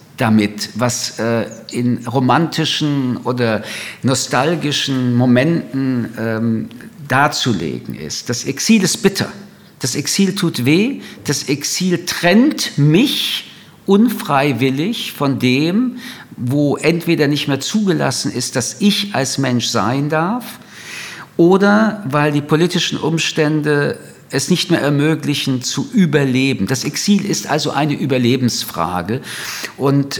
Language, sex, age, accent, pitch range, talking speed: German, male, 50-69, German, 130-175 Hz, 105 wpm